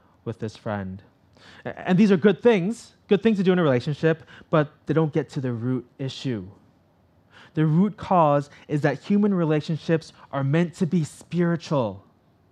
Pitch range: 110-145 Hz